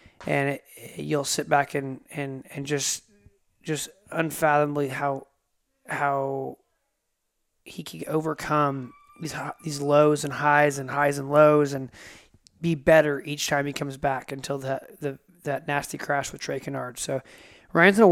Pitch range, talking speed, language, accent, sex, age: 140-160 Hz, 155 wpm, English, American, male, 20-39